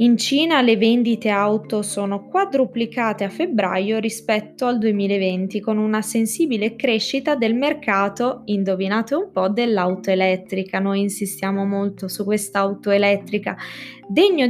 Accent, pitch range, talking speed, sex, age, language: native, 200-245 Hz, 130 wpm, female, 20-39, Italian